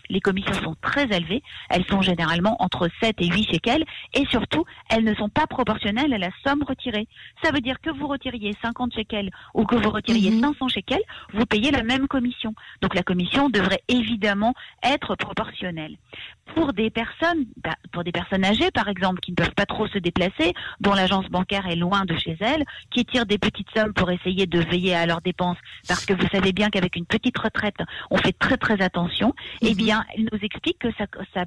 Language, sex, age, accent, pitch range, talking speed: French, female, 40-59, French, 190-245 Hz, 210 wpm